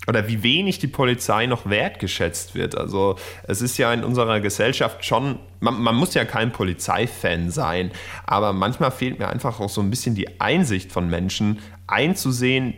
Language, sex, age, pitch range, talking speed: German, male, 10-29, 95-115 Hz, 175 wpm